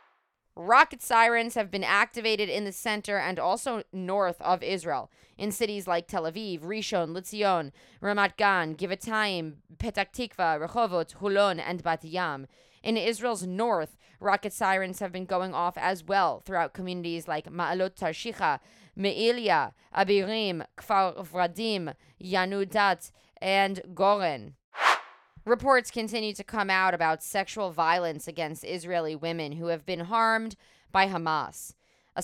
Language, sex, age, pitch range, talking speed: English, female, 20-39, 170-205 Hz, 130 wpm